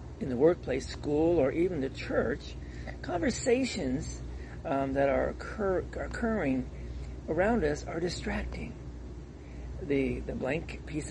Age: 50-69